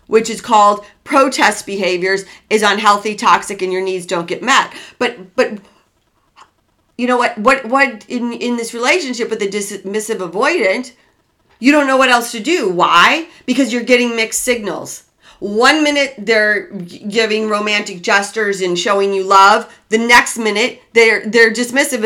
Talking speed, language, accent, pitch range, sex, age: 160 wpm, English, American, 210-260 Hz, female, 40-59